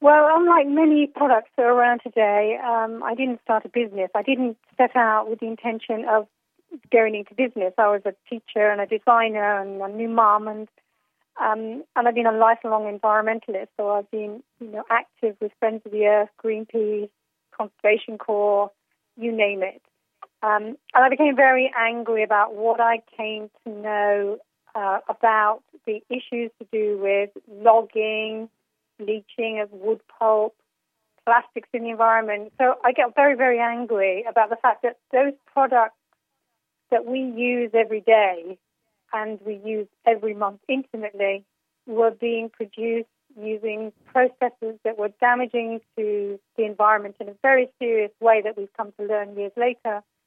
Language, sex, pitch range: English, female, 210-240 Hz